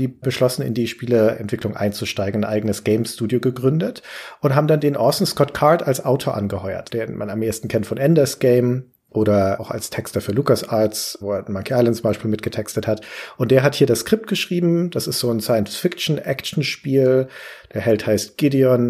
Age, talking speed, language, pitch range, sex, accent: 40-59, 185 wpm, German, 110-140 Hz, male, German